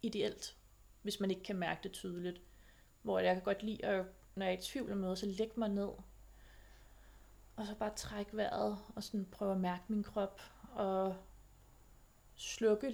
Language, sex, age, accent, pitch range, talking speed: Danish, female, 30-49, native, 175-215 Hz, 175 wpm